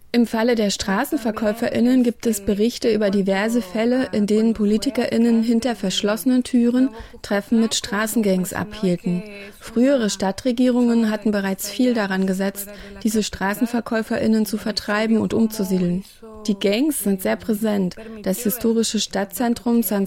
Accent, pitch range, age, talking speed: German, 200-235 Hz, 30-49, 125 wpm